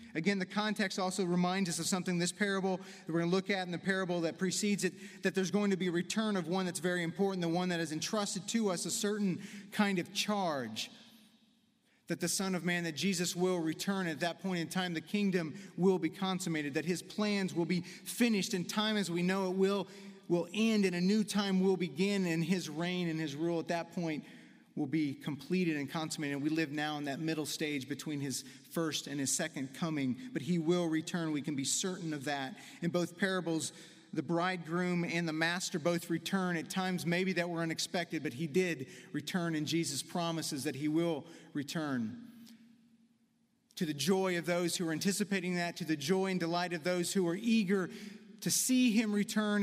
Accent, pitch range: American, 165-195 Hz